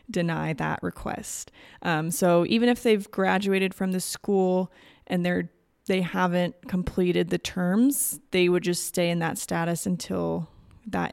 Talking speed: 150 wpm